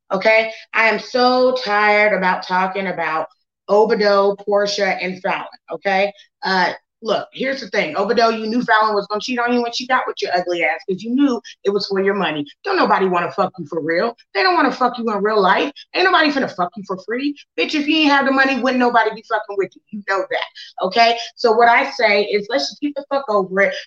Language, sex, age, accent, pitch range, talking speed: English, female, 30-49, American, 190-240 Hz, 240 wpm